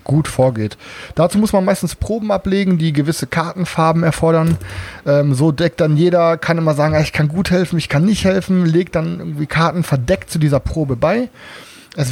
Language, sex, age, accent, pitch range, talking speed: German, male, 30-49, German, 150-190 Hz, 190 wpm